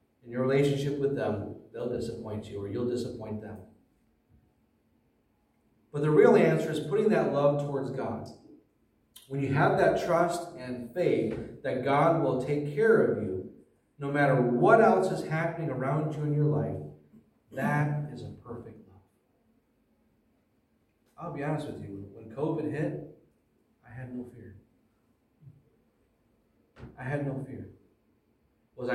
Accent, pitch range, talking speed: American, 115-140 Hz, 145 wpm